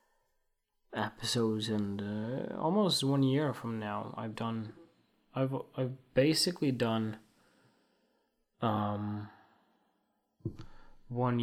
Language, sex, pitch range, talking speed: English, male, 110-145 Hz, 85 wpm